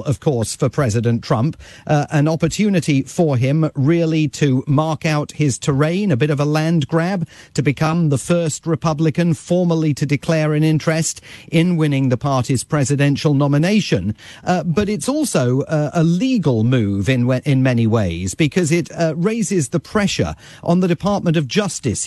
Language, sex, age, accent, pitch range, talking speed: English, male, 40-59, British, 125-165 Hz, 170 wpm